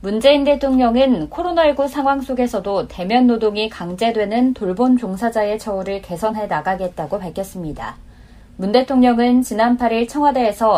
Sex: female